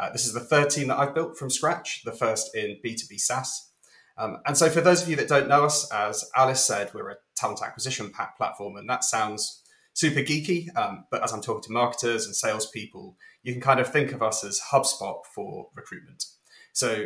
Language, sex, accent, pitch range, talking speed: English, male, British, 110-145 Hz, 220 wpm